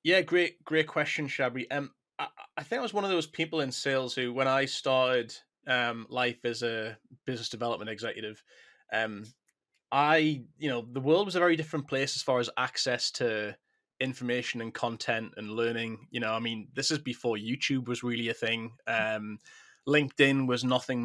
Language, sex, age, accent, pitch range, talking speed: English, male, 20-39, British, 115-145 Hz, 190 wpm